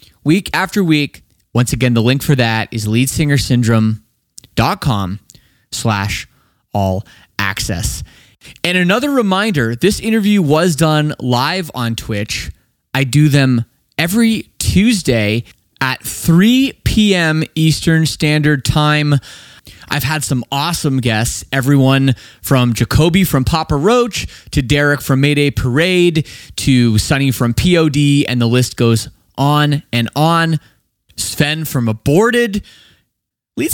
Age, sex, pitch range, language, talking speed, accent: 20-39, male, 115-180 Hz, English, 115 wpm, American